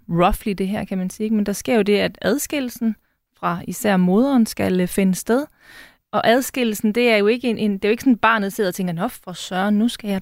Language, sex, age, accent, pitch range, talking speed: Danish, female, 30-49, native, 195-240 Hz, 225 wpm